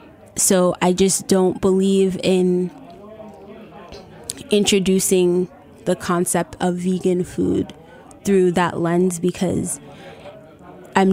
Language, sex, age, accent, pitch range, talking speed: English, female, 20-39, American, 175-190 Hz, 90 wpm